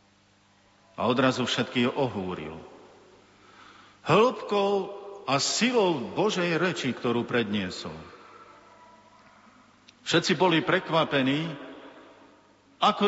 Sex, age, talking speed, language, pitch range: male, 50-69, 70 wpm, Slovak, 110-155 Hz